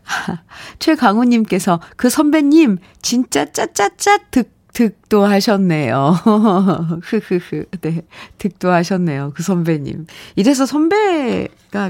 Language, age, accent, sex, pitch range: Korean, 40-59, native, female, 180-265 Hz